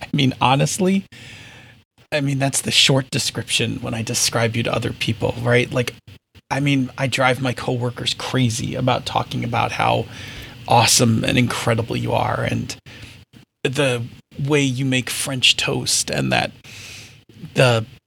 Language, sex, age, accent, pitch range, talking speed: English, male, 40-59, American, 120-140 Hz, 145 wpm